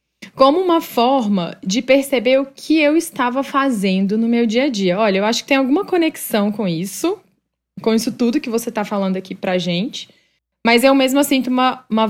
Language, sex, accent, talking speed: Portuguese, female, Brazilian, 205 wpm